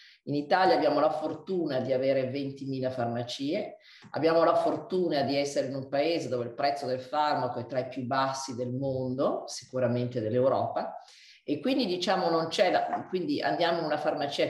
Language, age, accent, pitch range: Italian, 50-69, native, 130-180 Hz